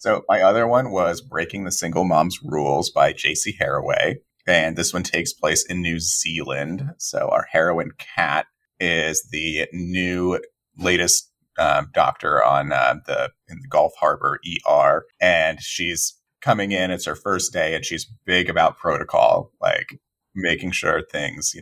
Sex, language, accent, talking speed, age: male, English, American, 160 wpm, 30-49